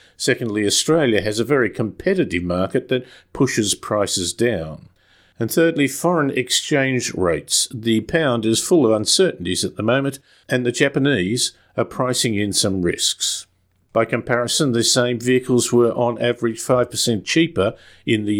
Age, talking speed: 50-69, 145 wpm